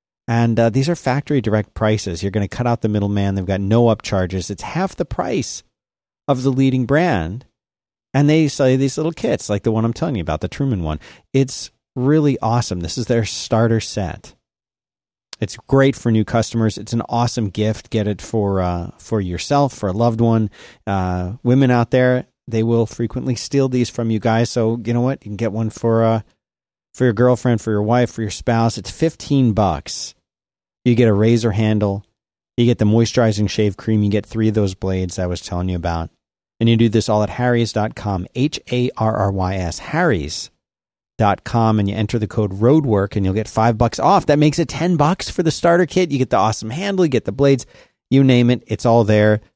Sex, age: male, 40-59